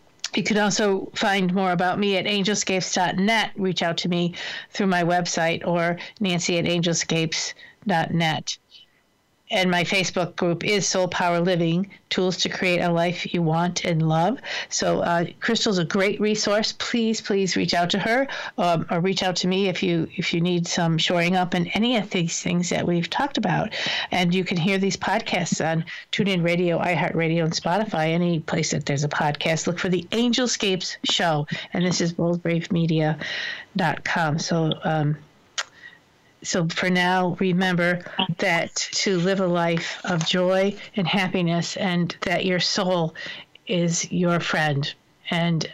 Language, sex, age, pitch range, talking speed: English, female, 50-69, 170-195 Hz, 160 wpm